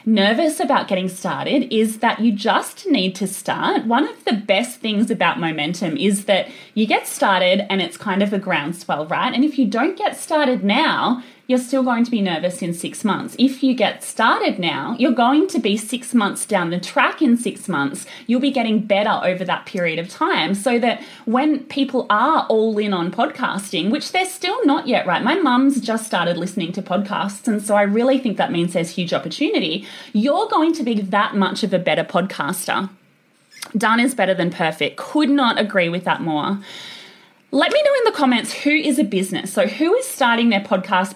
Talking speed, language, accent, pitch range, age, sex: 205 wpm, English, Australian, 190-260 Hz, 30-49, female